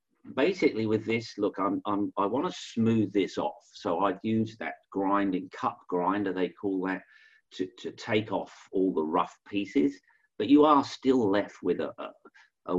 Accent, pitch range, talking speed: British, 95-150 Hz, 185 wpm